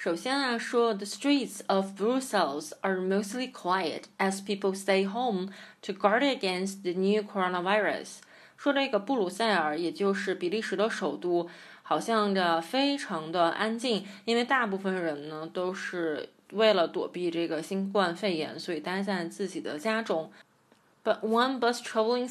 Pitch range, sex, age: 180-235 Hz, female, 20-39